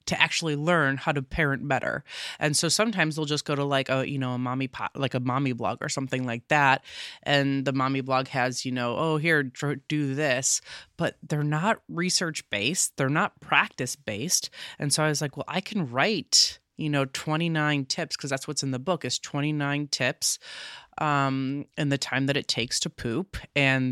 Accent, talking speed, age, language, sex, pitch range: American, 205 wpm, 20-39, English, female, 135-160 Hz